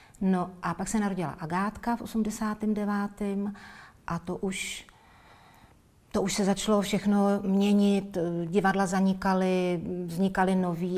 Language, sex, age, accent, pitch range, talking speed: Czech, female, 40-59, native, 170-200 Hz, 115 wpm